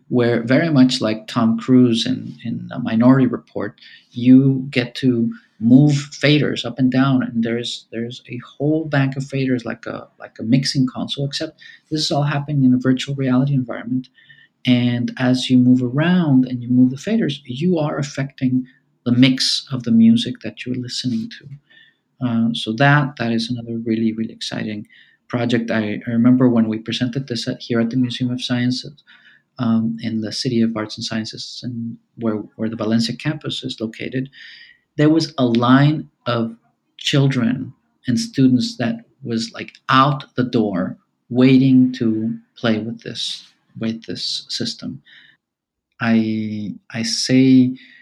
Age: 40-59